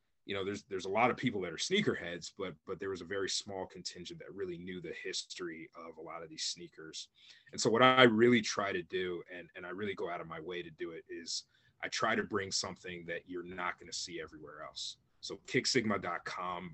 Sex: male